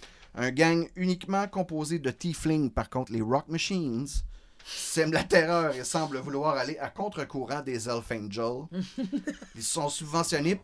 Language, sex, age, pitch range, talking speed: French, male, 30-49, 110-160 Hz, 145 wpm